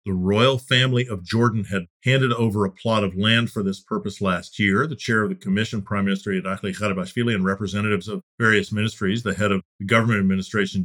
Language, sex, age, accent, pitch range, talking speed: English, male, 50-69, American, 100-125 Hz, 205 wpm